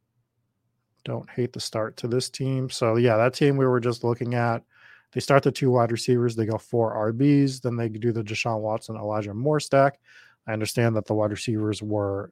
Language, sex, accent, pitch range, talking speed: English, male, American, 110-125 Hz, 205 wpm